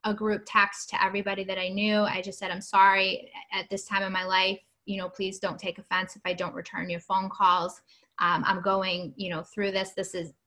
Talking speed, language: 235 wpm, English